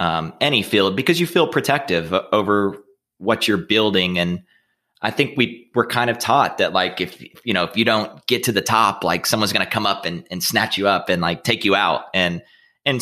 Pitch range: 90-115 Hz